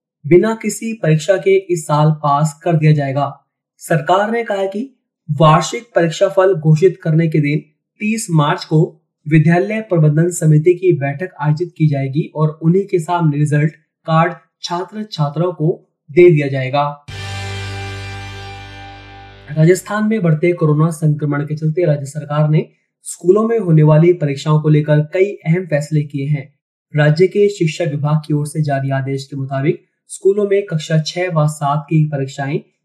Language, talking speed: Hindi, 150 wpm